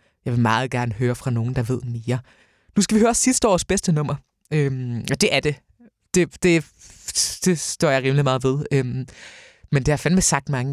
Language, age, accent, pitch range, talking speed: Danish, 20-39, native, 135-180 Hz, 220 wpm